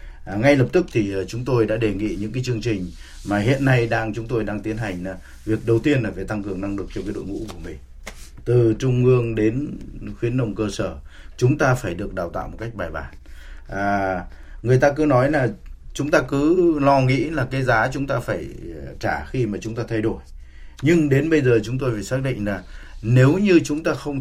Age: 20-39